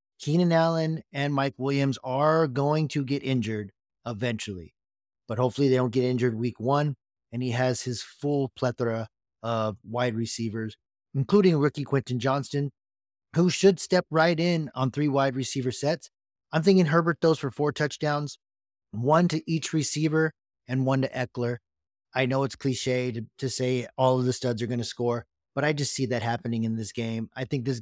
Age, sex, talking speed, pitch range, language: 30-49, male, 180 wpm, 120-150 Hz, English